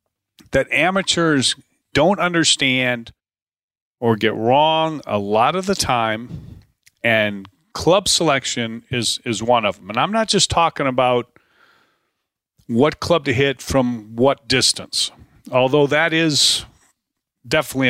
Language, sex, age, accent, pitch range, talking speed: English, male, 40-59, American, 110-140 Hz, 125 wpm